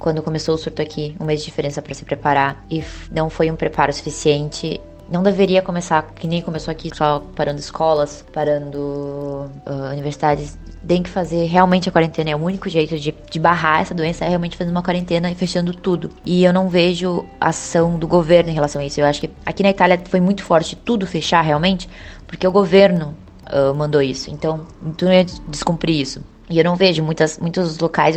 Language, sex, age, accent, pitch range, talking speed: Portuguese, female, 20-39, Brazilian, 155-180 Hz, 200 wpm